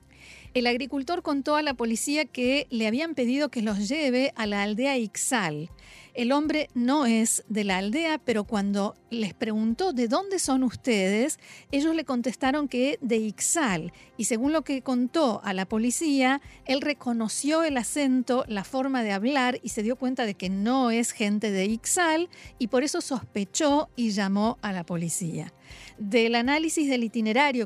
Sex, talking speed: female, 170 wpm